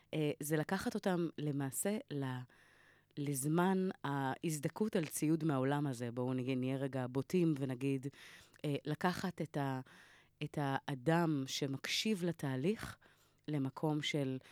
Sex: female